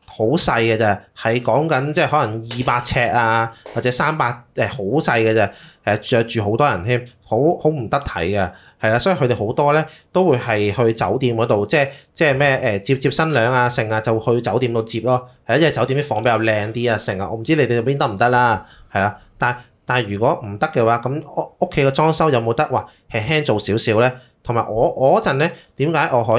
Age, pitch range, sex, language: 30-49, 110-135 Hz, male, Chinese